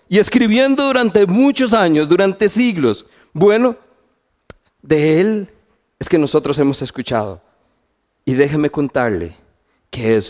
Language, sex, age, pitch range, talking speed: Spanish, male, 40-59, 115-165 Hz, 115 wpm